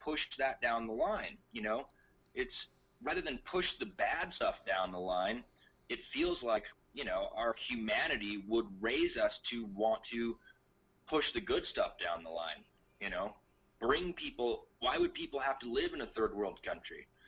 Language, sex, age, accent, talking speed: English, male, 30-49, American, 180 wpm